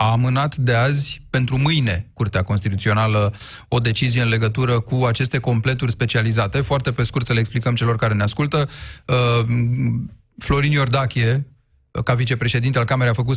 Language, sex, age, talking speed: Romanian, male, 30-49, 155 wpm